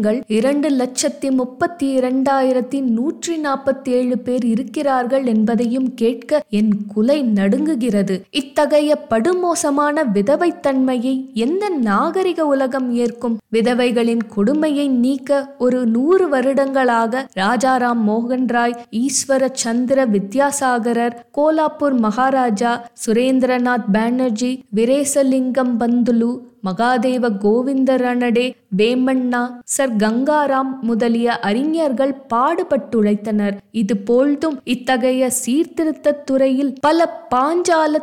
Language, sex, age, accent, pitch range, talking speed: Tamil, female, 20-39, native, 235-285 Hz, 85 wpm